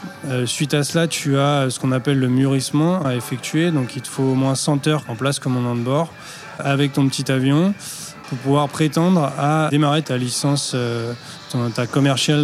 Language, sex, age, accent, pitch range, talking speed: French, male, 20-39, French, 130-150 Hz, 205 wpm